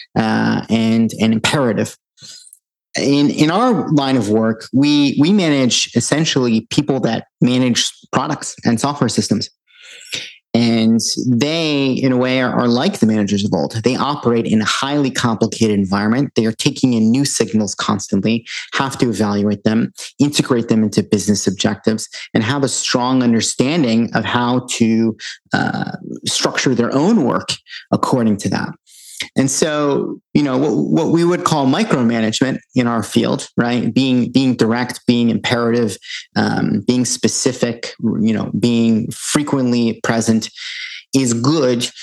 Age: 30-49